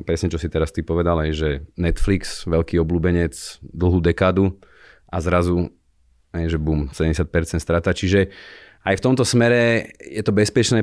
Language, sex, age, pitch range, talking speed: Slovak, male, 30-49, 80-95 Hz, 155 wpm